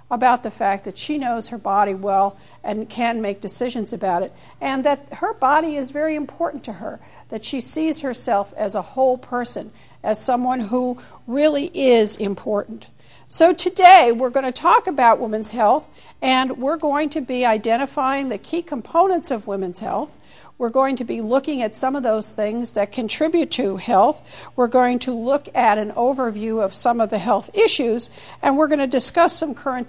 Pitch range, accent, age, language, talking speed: 210-270 Hz, American, 50-69, English, 185 wpm